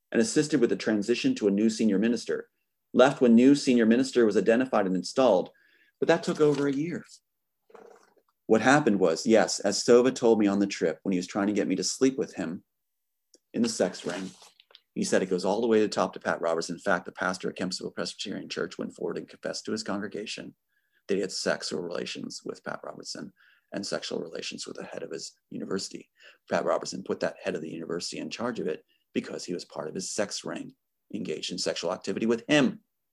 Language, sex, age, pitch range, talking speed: English, male, 30-49, 100-135 Hz, 220 wpm